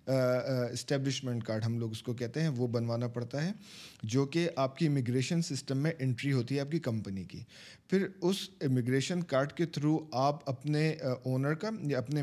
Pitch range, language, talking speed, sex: 125-150 Hz, Urdu, 190 wpm, male